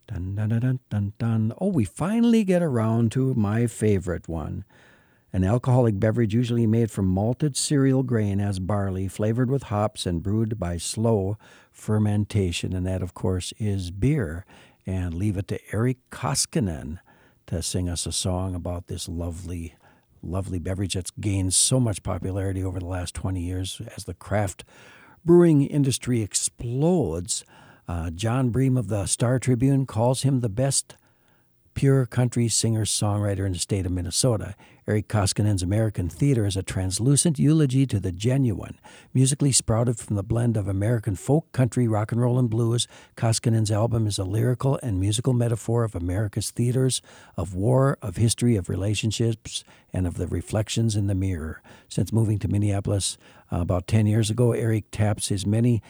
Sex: male